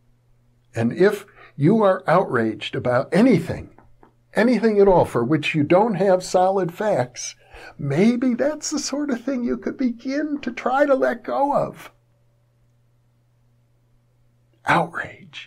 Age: 60-79